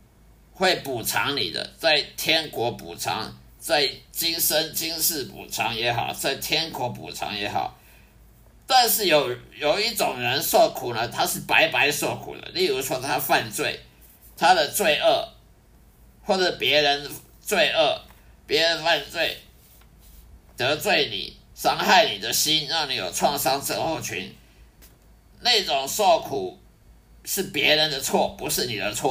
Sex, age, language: male, 50-69, English